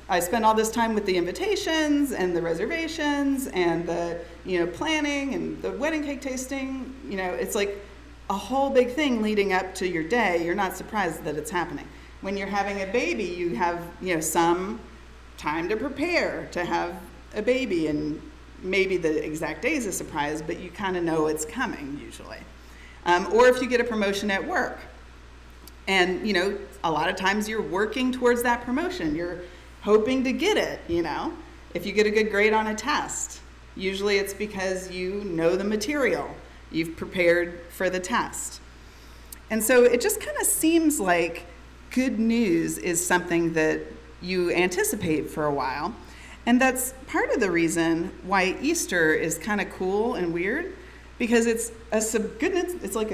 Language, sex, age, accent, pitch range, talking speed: English, female, 30-49, American, 170-250 Hz, 180 wpm